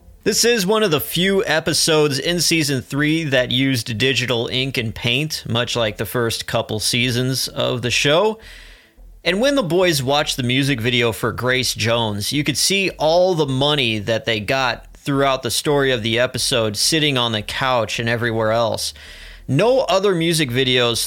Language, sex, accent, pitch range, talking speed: English, male, American, 115-155 Hz, 175 wpm